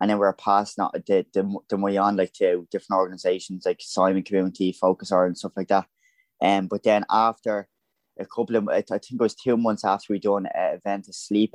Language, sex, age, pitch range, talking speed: English, male, 10-29, 95-105 Hz, 225 wpm